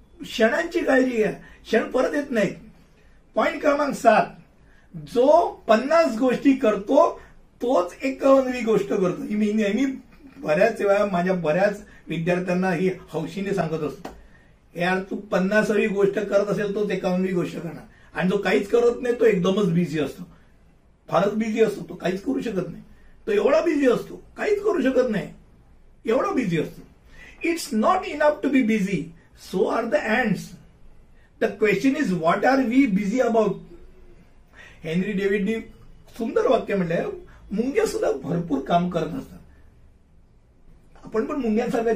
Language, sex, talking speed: Hindi, male, 115 wpm